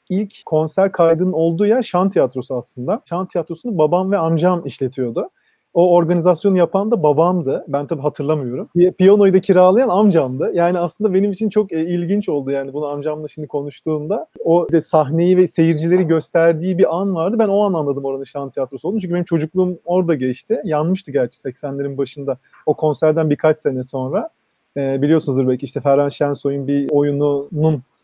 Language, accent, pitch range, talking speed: Turkish, native, 150-195 Hz, 165 wpm